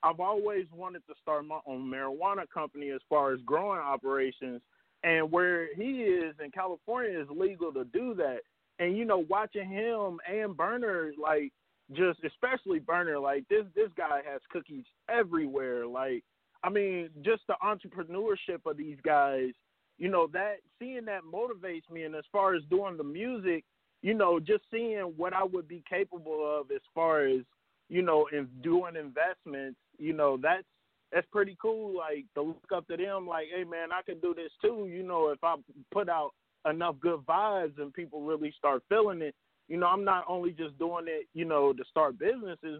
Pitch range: 150-195 Hz